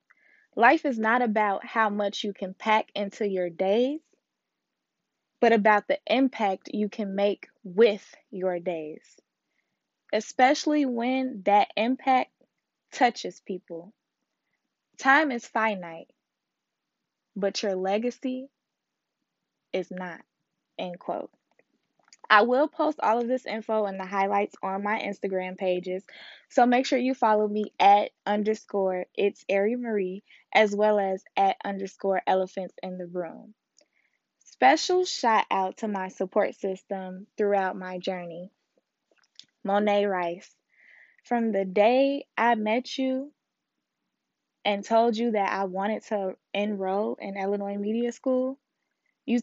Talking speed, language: 125 wpm, English